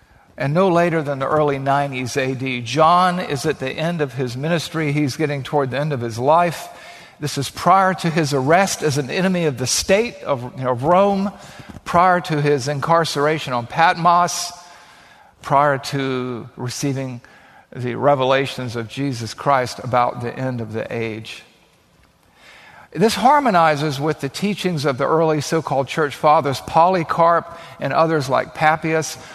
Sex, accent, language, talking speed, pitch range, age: male, American, English, 155 wpm, 135-175 Hz, 50-69